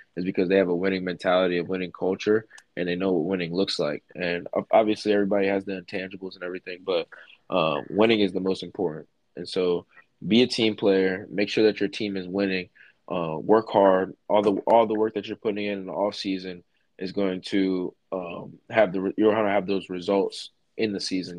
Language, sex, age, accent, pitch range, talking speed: English, male, 20-39, American, 90-105 Hz, 215 wpm